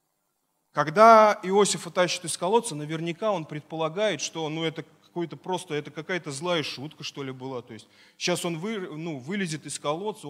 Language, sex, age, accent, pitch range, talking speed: Russian, male, 30-49, native, 150-200 Hz, 165 wpm